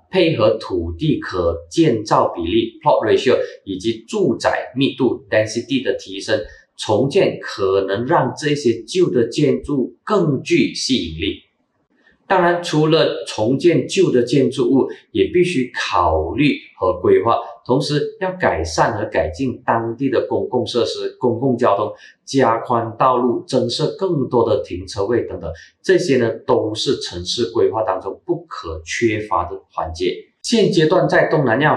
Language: Chinese